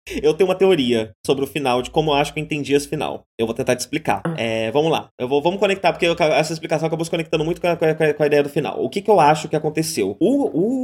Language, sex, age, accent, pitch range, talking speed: Portuguese, male, 20-39, Brazilian, 145-200 Hz, 300 wpm